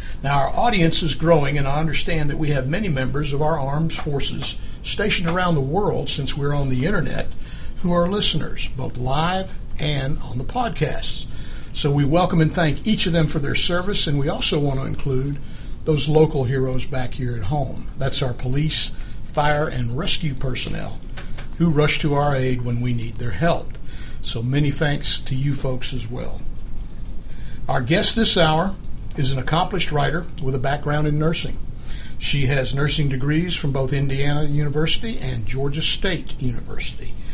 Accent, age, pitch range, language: American, 60-79, 130-160 Hz, English